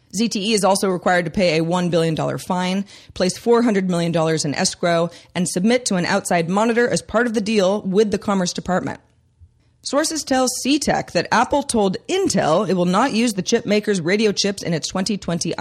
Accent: American